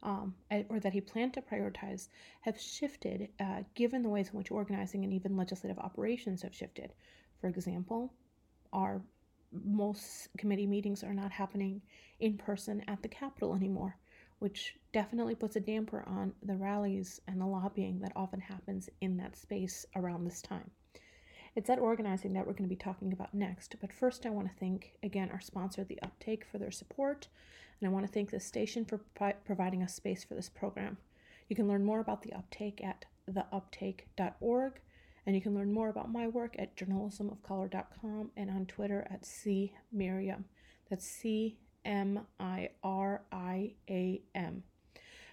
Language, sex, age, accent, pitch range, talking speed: English, female, 30-49, American, 190-215 Hz, 165 wpm